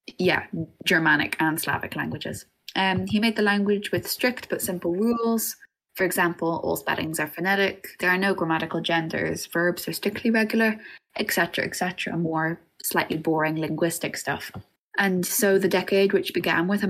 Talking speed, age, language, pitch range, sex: 165 wpm, 20-39, English, 165-195 Hz, female